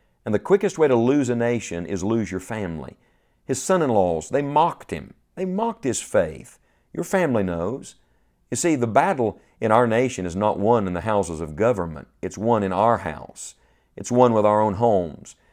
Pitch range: 100-125 Hz